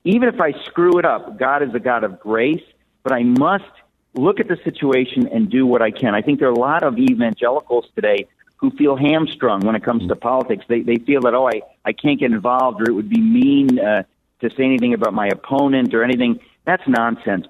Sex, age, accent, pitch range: male, 50-69, American, 115-155 Hz